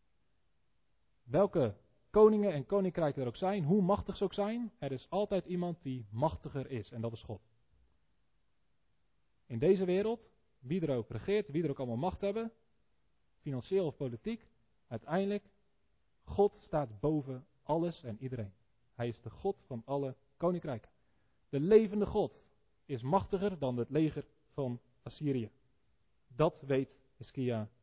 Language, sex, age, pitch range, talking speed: Dutch, male, 40-59, 120-165 Hz, 140 wpm